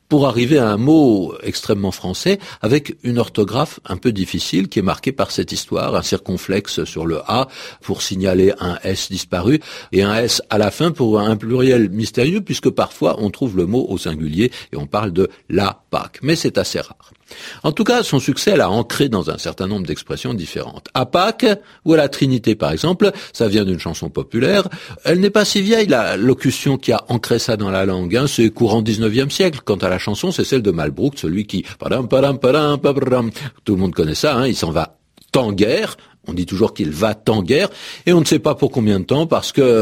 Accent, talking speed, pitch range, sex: French, 215 wpm, 105-150 Hz, male